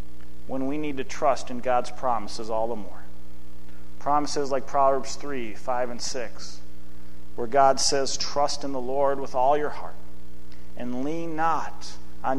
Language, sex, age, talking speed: English, male, 40-59, 160 wpm